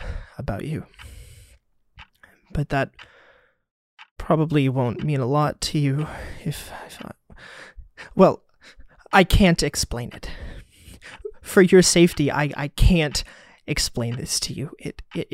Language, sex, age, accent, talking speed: English, male, 20-39, American, 120 wpm